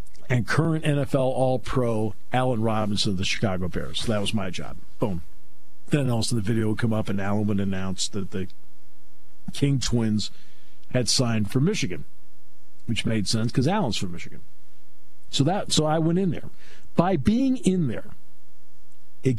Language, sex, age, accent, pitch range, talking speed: English, male, 50-69, American, 85-135 Hz, 160 wpm